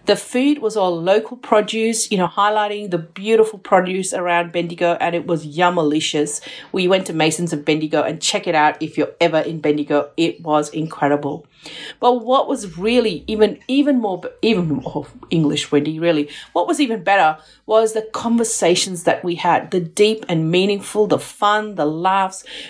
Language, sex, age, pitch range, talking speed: English, female, 40-59, 170-220 Hz, 175 wpm